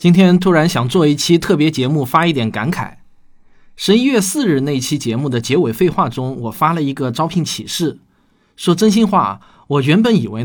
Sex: male